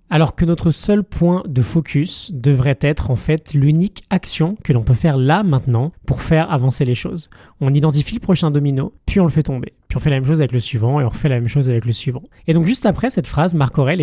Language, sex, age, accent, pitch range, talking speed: French, male, 20-39, French, 130-165 Hz, 255 wpm